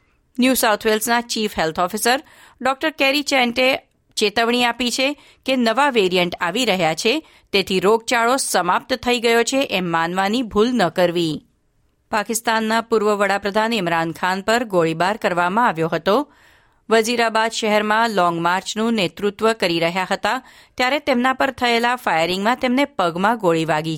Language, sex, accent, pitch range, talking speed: Gujarati, female, native, 180-235 Hz, 105 wpm